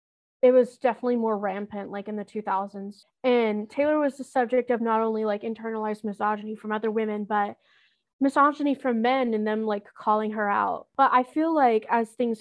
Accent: American